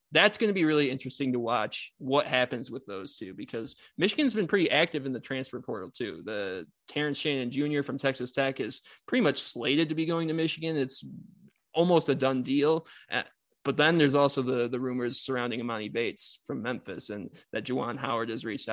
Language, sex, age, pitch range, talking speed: English, male, 20-39, 130-160 Hz, 200 wpm